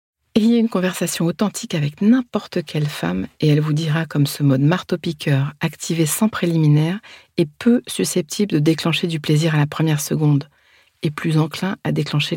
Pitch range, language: 145-170 Hz, French